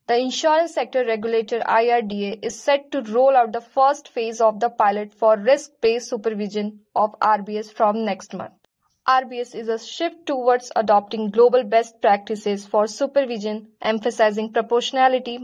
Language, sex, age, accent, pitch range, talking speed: English, female, 20-39, Indian, 210-250 Hz, 145 wpm